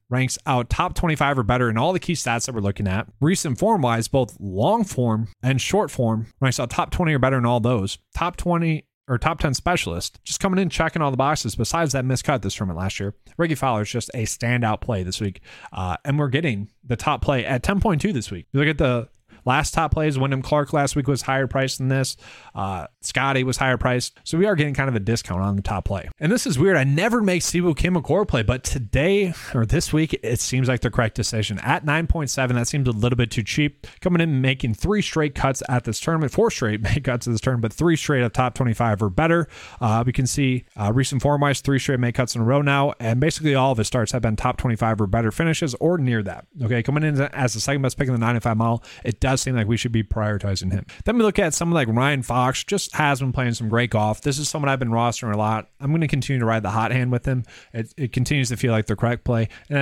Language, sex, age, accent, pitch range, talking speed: English, male, 30-49, American, 115-145 Hz, 260 wpm